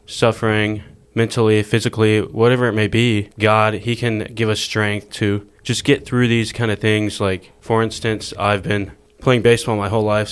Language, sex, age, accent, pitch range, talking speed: English, male, 20-39, American, 100-110 Hz, 180 wpm